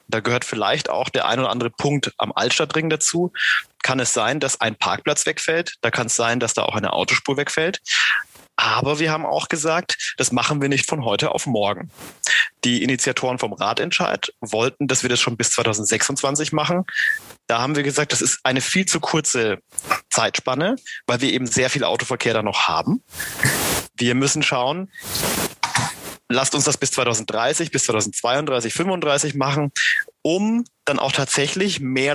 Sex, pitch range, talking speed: male, 120-155 Hz, 170 wpm